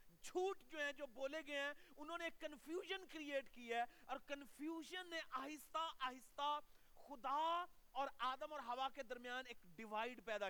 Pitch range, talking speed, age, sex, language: 220-295 Hz, 80 wpm, 40-59, male, Urdu